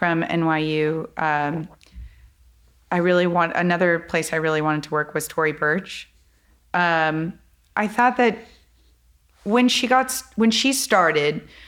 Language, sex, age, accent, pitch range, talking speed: English, female, 30-49, American, 150-180 Hz, 135 wpm